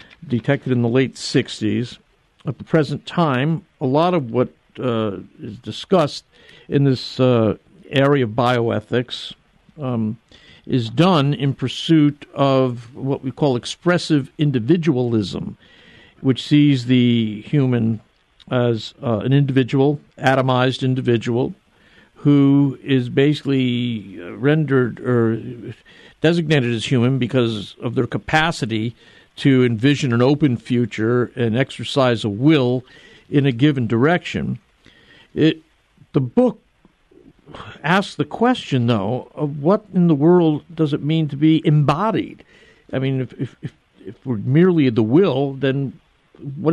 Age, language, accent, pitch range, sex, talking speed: 50-69, English, American, 120-155 Hz, male, 125 wpm